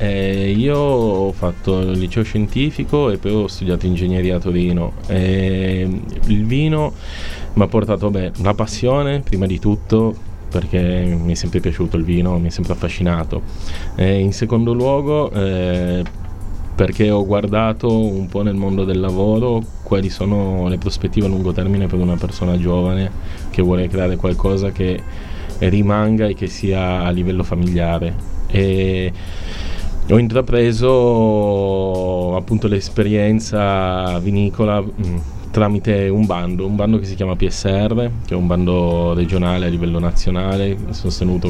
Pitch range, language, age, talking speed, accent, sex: 90-105 Hz, Italian, 20-39, 145 wpm, native, male